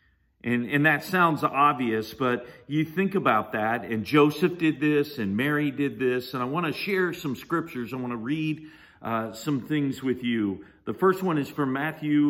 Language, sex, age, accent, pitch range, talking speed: English, male, 50-69, American, 110-150 Hz, 195 wpm